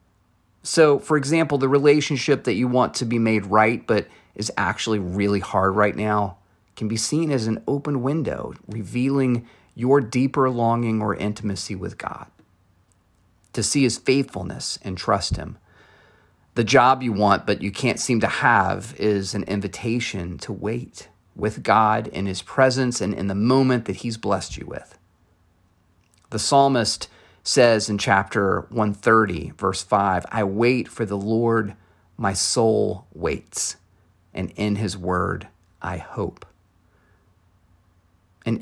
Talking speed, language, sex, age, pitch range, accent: 145 wpm, English, male, 40-59, 95-120 Hz, American